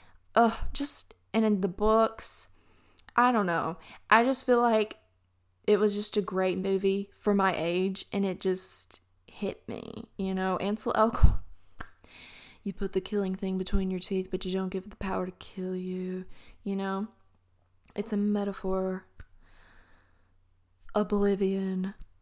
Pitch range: 170-210 Hz